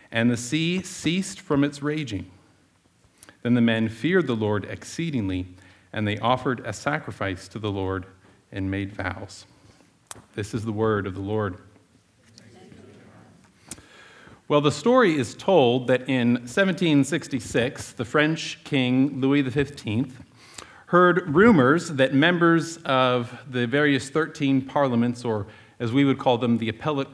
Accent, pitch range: American, 115-145 Hz